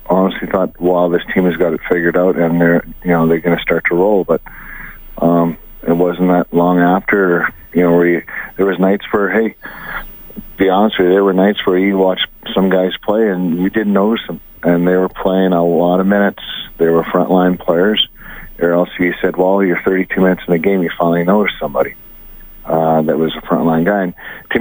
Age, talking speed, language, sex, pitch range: 40-59, 220 wpm, English, male, 85-95 Hz